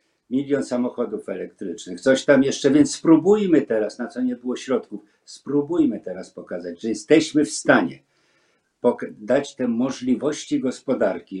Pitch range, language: 120-160 Hz, Polish